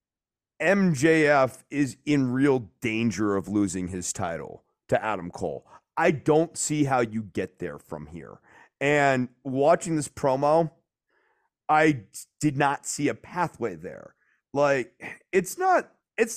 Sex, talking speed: male, 125 wpm